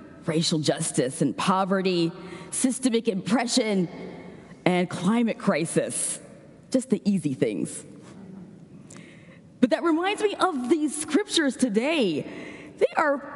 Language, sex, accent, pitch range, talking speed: English, female, American, 190-280 Hz, 105 wpm